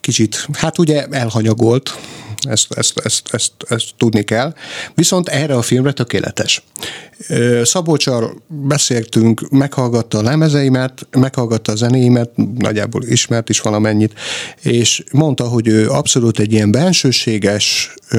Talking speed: 110 wpm